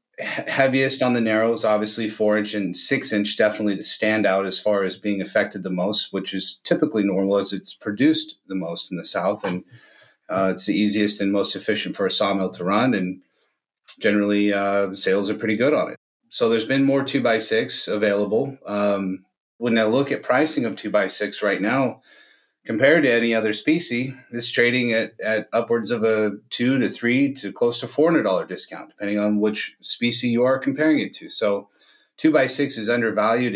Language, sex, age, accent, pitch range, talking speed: English, male, 30-49, American, 100-120 Hz, 195 wpm